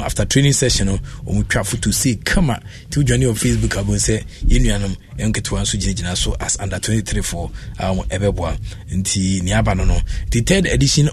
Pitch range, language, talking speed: 100-125 Hz, English, 190 wpm